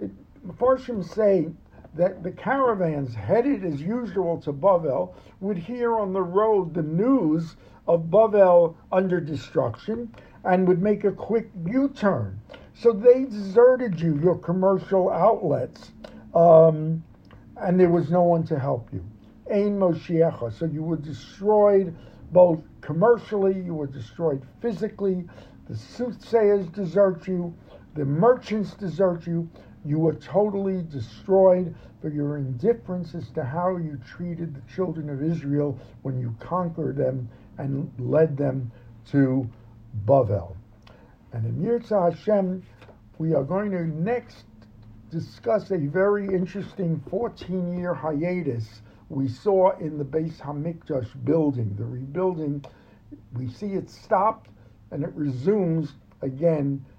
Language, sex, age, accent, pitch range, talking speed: English, male, 60-79, American, 130-190 Hz, 125 wpm